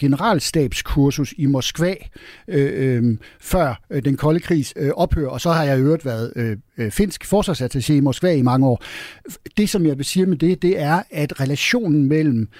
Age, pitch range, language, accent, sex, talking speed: 60-79, 130-170 Hz, Danish, native, male, 190 wpm